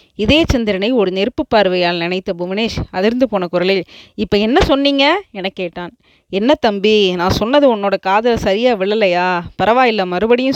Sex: female